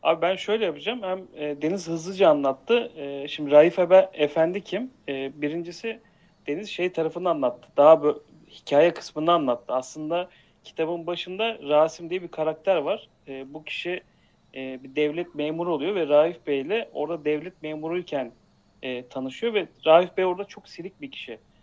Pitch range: 140-175 Hz